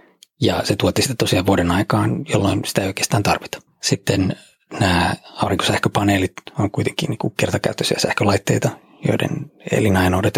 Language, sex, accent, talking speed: Finnish, male, native, 125 wpm